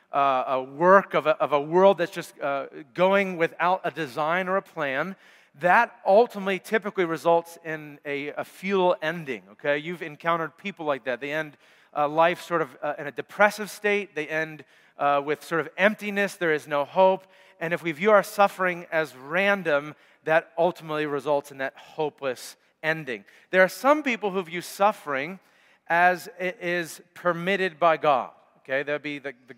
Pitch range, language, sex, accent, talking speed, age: 155-190 Hz, English, male, American, 180 wpm, 40-59